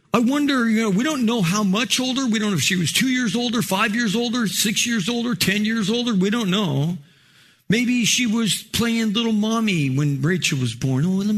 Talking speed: 230 wpm